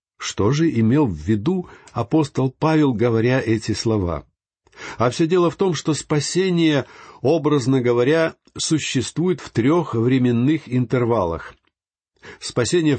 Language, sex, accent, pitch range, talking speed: Russian, male, native, 100-140 Hz, 115 wpm